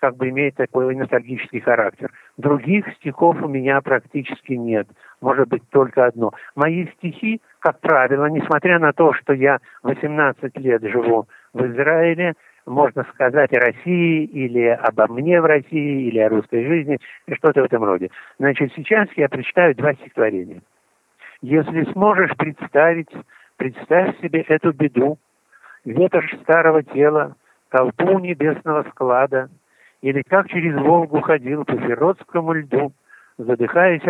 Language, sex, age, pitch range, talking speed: Russian, male, 60-79, 130-165 Hz, 135 wpm